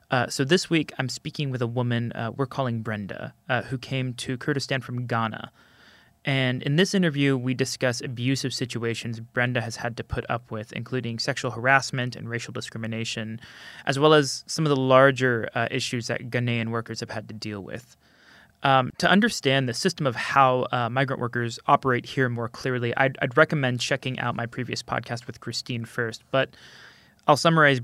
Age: 20-39